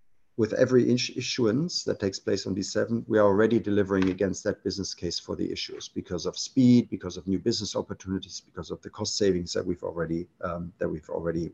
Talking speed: 210 wpm